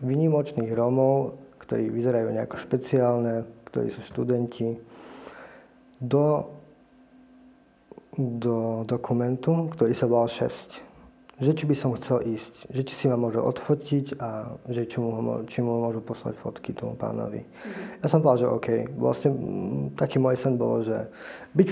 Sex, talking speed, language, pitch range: male, 140 wpm, Slovak, 115-140 Hz